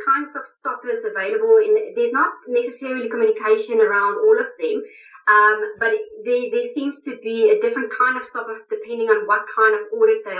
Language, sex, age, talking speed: English, female, 30-49, 180 wpm